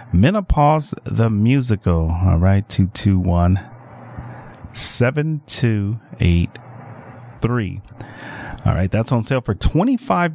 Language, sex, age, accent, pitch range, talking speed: English, male, 30-49, American, 110-160 Hz, 115 wpm